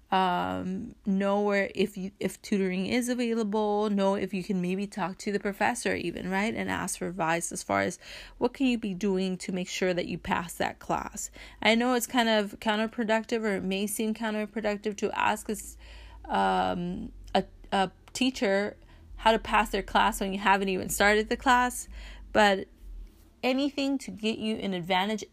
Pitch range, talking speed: 185-220 Hz, 180 wpm